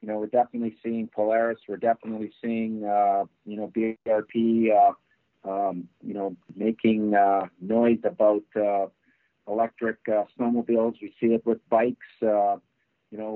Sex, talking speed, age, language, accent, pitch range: male, 150 wpm, 50-69, English, American, 105-115 Hz